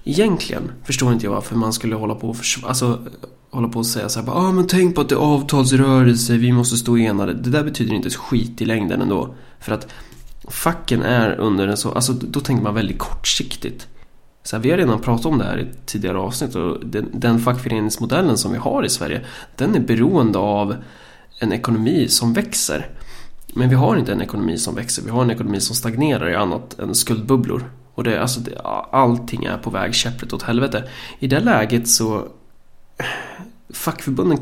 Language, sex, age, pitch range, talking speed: Swedish, male, 20-39, 115-130 Hz, 200 wpm